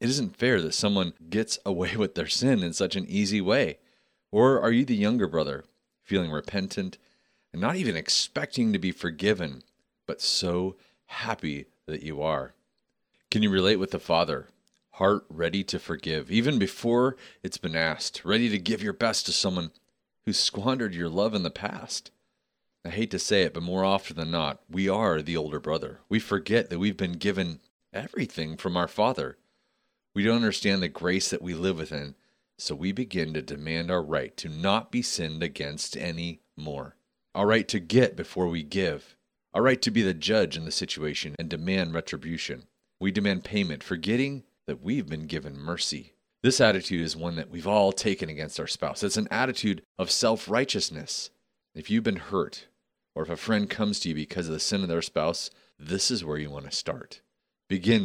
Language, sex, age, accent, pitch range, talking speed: English, male, 40-59, American, 80-105 Hz, 190 wpm